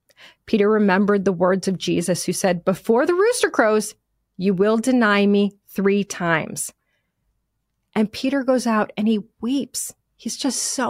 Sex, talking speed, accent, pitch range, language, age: female, 155 wpm, American, 195-260 Hz, English, 30-49